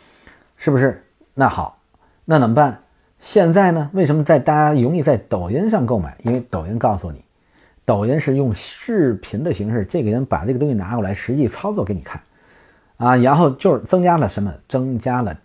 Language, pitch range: Chinese, 105-145 Hz